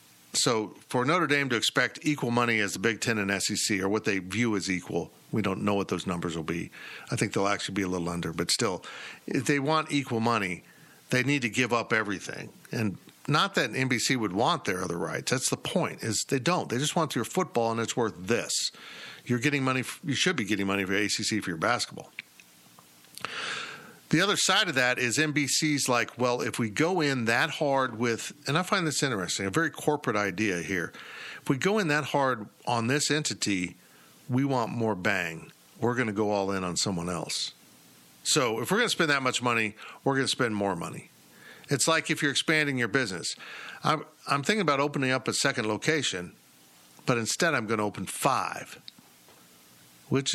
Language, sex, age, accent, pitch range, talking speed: English, male, 50-69, American, 100-145 Hz, 205 wpm